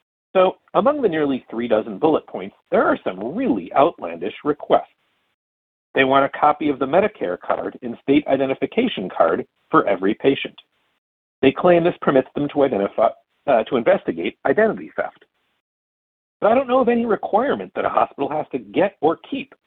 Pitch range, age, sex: 120-205 Hz, 50-69, male